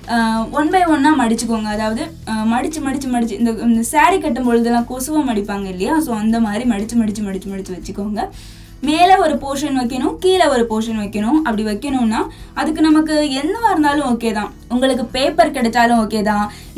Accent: native